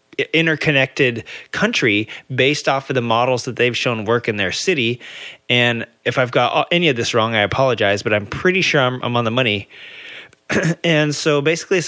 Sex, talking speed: male, 185 wpm